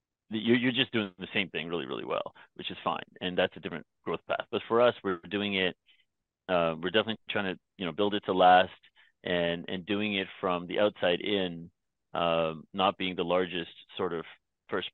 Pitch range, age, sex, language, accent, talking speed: 85-100 Hz, 30-49, male, English, American, 205 wpm